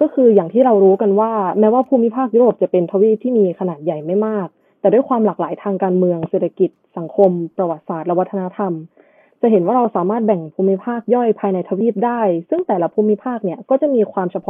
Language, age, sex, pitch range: Thai, 20-39, female, 180-230 Hz